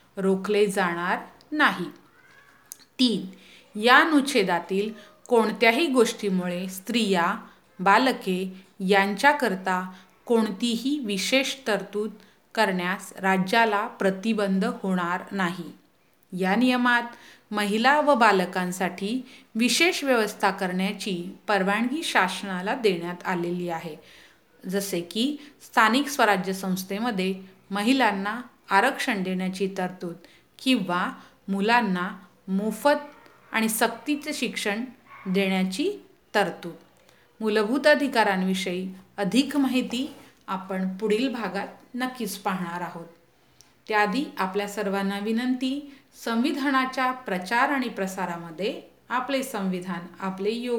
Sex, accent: female, native